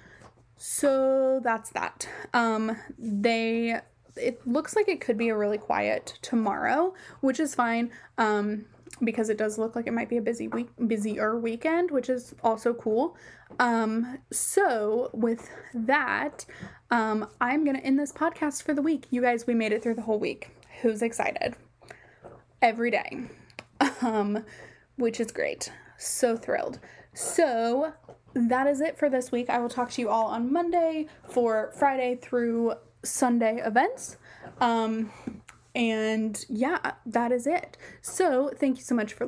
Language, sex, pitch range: English, female, 225-275 Hz